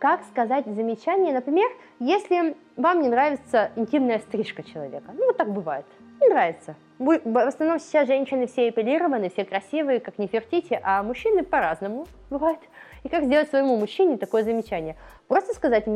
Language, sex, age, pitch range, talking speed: Russian, female, 20-39, 210-320 Hz, 155 wpm